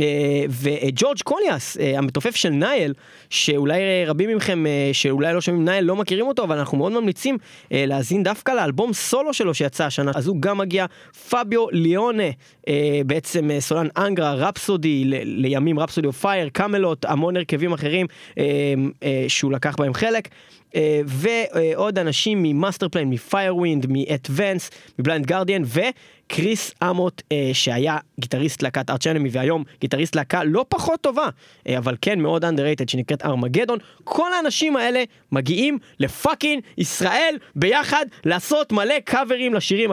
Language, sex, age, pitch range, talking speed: Hebrew, male, 20-39, 145-205 Hz, 135 wpm